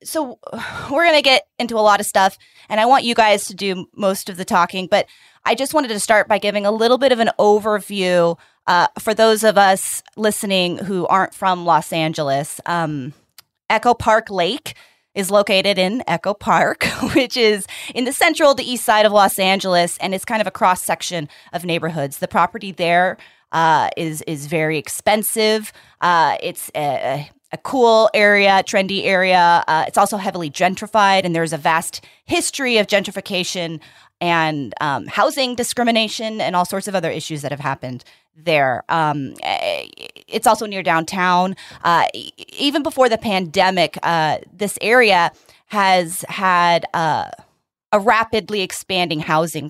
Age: 20-39